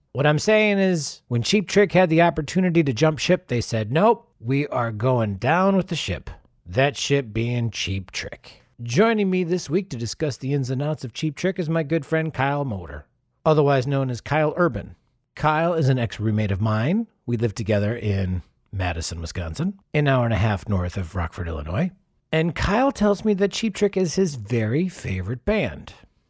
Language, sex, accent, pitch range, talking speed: English, male, American, 110-170 Hz, 195 wpm